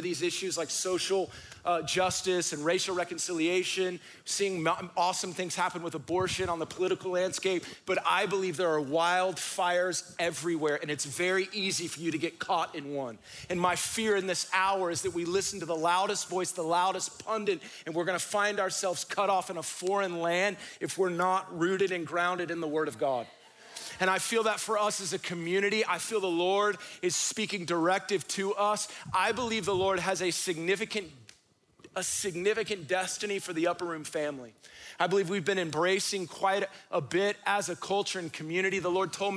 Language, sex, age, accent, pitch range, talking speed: Spanish, male, 40-59, American, 160-195 Hz, 190 wpm